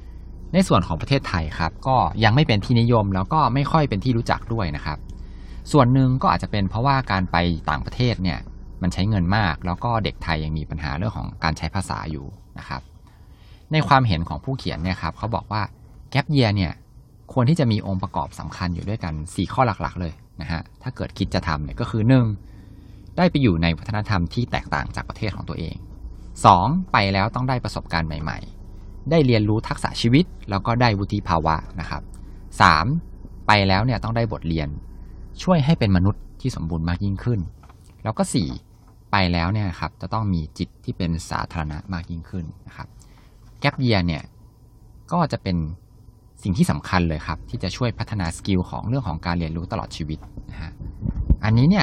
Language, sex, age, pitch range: Thai, male, 20-39, 85-115 Hz